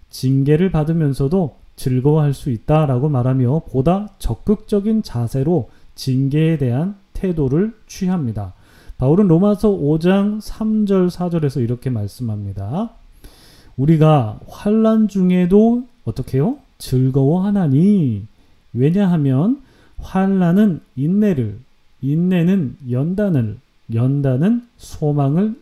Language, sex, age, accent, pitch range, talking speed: English, male, 30-49, Korean, 130-200 Hz, 75 wpm